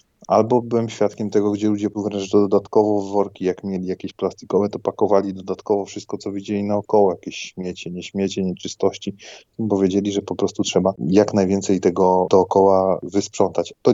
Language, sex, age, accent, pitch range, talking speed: Polish, male, 30-49, native, 95-105 Hz, 165 wpm